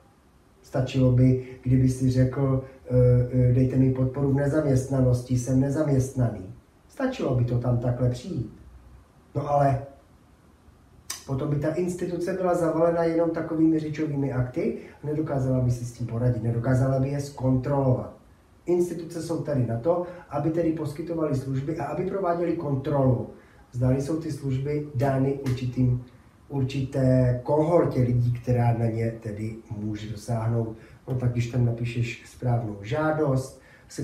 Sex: male